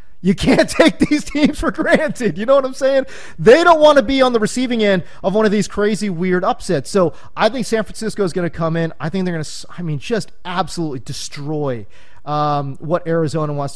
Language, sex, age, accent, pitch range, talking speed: English, male, 30-49, American, 160-200 Hz, 225 wpm